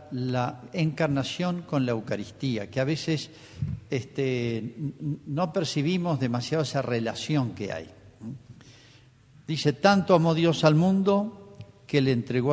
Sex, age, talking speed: male, 50-69, 120 wpm